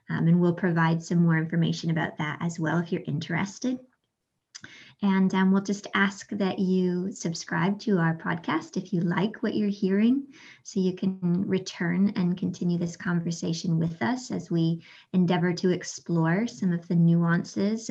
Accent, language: American, English